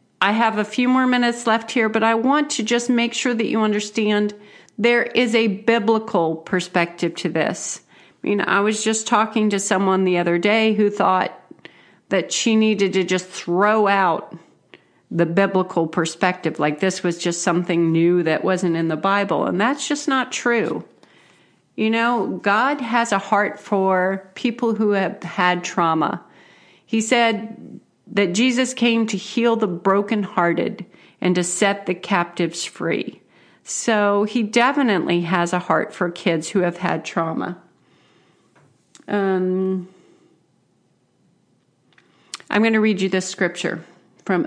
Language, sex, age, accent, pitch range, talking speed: English, female, 40-59, American, 180-225 Hz, 150 wpm